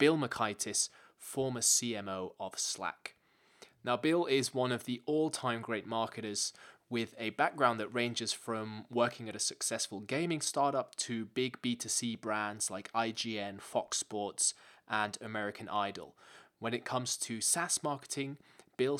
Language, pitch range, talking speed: English, 110-130 Hz, 140 wpm